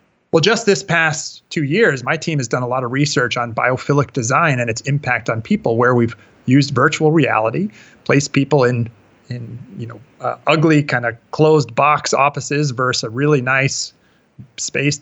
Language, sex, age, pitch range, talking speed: English, male, 30-49, 120-150 Hz, 180 wpm